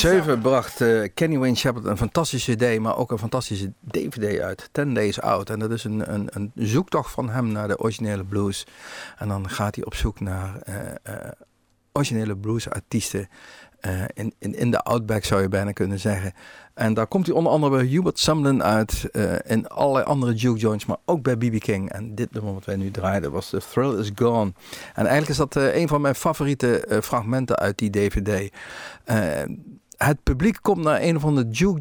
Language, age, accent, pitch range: Dutch, 50-69, Dutch, 105-135 Hz